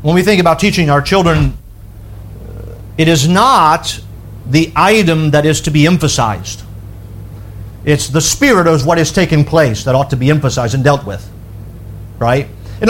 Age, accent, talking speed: 50-69, American, 165 wpm